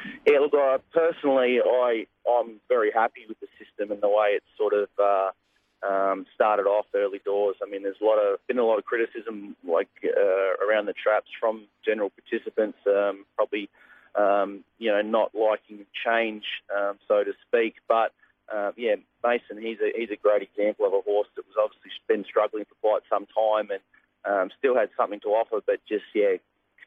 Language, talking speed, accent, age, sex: English, 190 wpm, Australian, 30-49, male